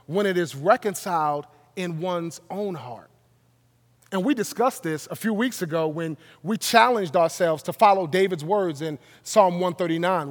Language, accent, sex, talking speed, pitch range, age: English, American, male, 155 wpm, 150-200 Hz, 30-49